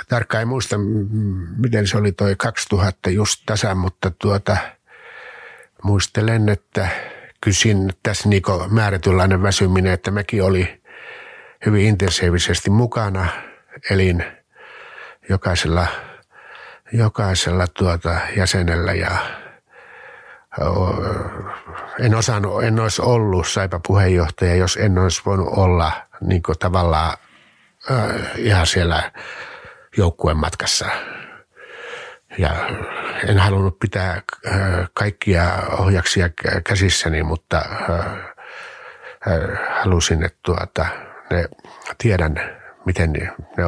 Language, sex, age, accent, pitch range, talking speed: Finnish, male, 60-79, native, 90-105 Hz, 85 wpm